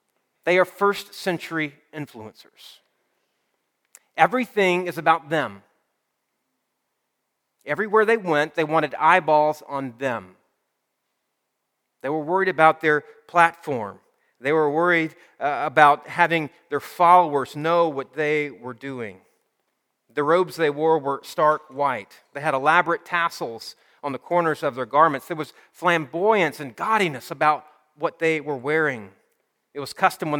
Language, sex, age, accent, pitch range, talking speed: English, male, 40-59, American, 140-170 Hz, 130 wpm